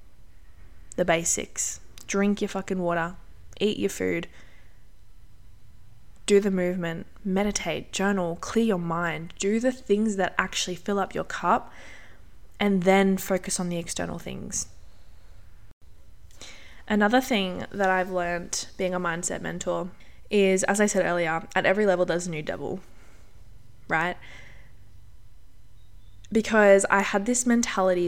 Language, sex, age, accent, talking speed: English, female, 20-39, Australian, 130 wpm